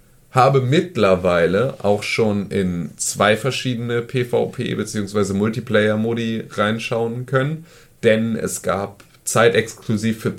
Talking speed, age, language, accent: 100 wpm, 30-49, German, German